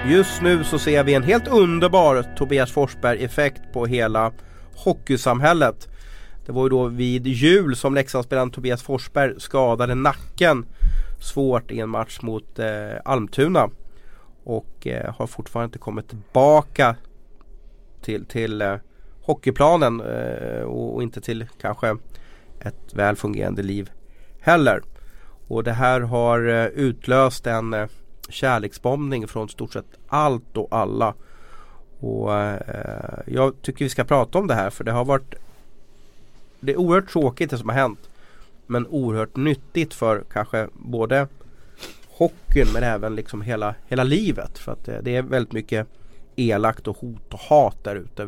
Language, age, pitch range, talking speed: Swedish, 30-49, 105-135 Hz, 140 wpm